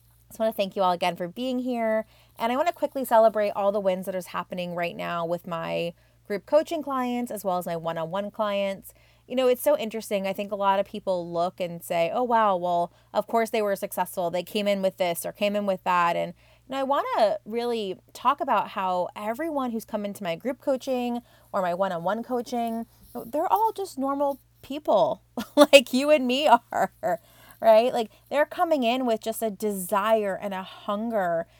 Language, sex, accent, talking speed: English, female, American, 210 wpm